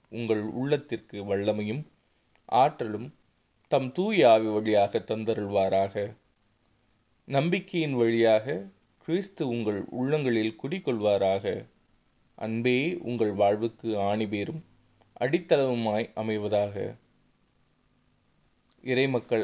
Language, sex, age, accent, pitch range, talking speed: Tamil, male, 20-39, native, 105-130 Hz, 65 wpm